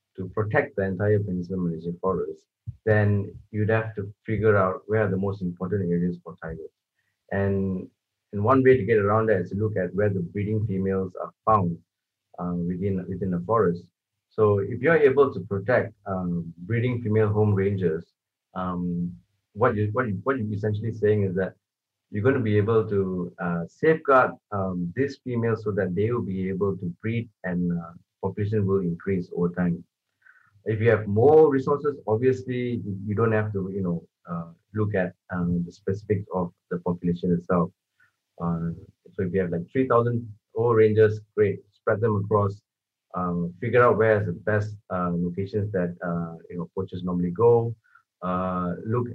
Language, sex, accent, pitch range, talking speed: English, male, Malaysian, 90-110 Hz, 175 wpm